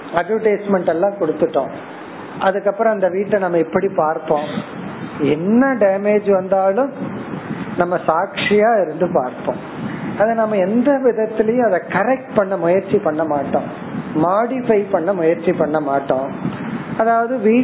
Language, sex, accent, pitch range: Tamil, male, native, 180-230 Hz